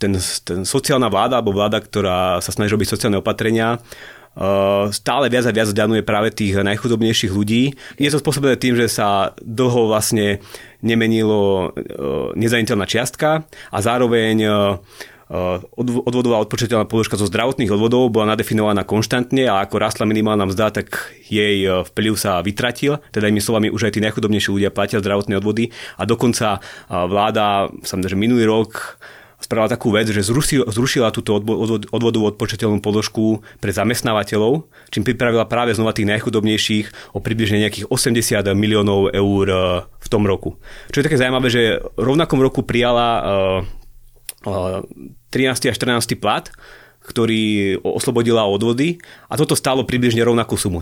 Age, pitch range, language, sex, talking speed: 30-49, 105-120 Hz, Slovak, male, 135 wpm